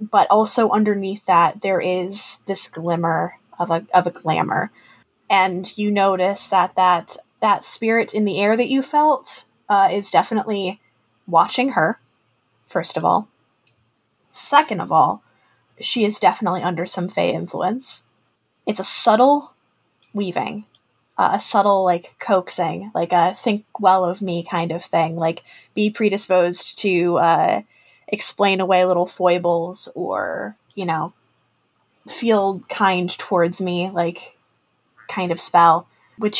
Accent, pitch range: American, 175-210 Hz